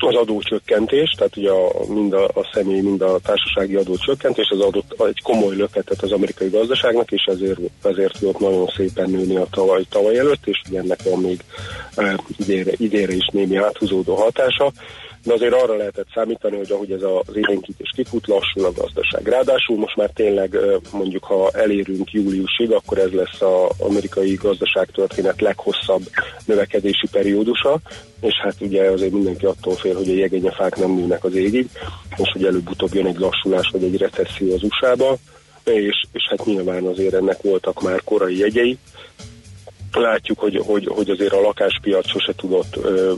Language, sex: Hungarian, male